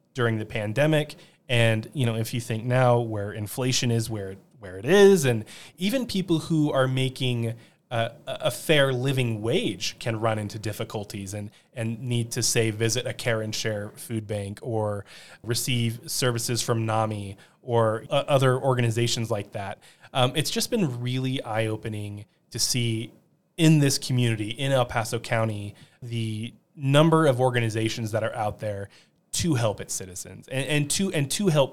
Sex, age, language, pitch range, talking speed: male, 20-39, English, 115-145 Hz, 170 wpm